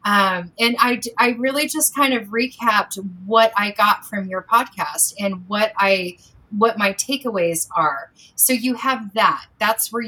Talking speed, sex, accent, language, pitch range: 165 wpm, female, American, English, 190-225 Hz